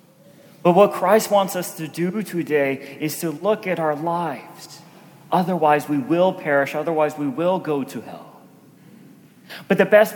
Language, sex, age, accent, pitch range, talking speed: English, male, 30-49, American, 155-195 Hz, 160 wpm